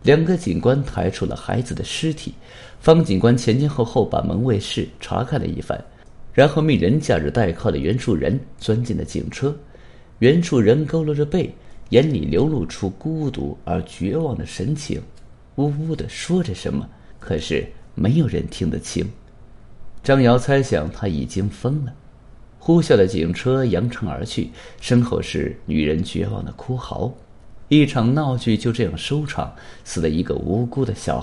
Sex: male